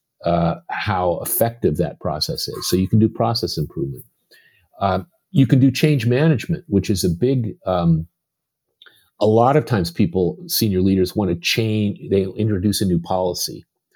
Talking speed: 165 wpm